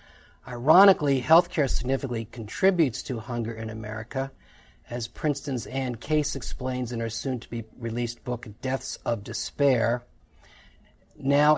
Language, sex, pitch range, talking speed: English, male, 115-135 Hz, 125 wpm